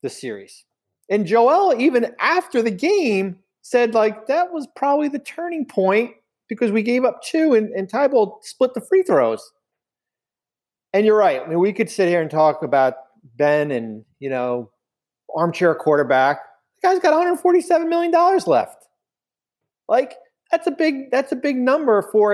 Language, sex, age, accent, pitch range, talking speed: English, male, 40-59, American, 125-205 Hz, 165 wpm